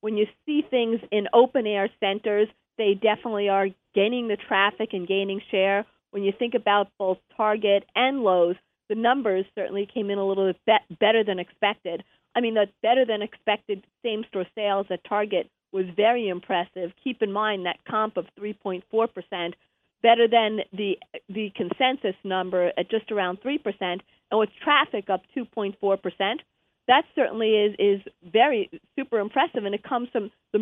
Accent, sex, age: American, female, 40-59